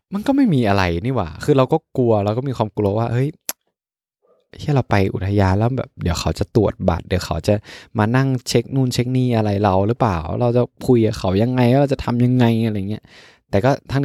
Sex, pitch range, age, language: male, 95-130 Hz, 20-39, Thai